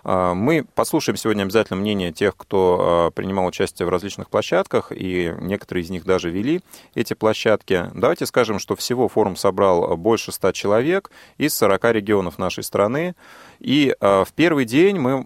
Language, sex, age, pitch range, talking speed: Russian, male, 30-49, 90-115 Hz, 155 wpm